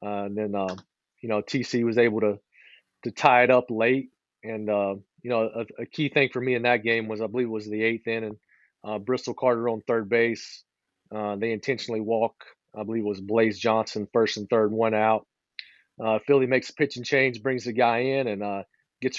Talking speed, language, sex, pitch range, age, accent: 225 wpm, English, male, 110-125 Hz, 40-59, American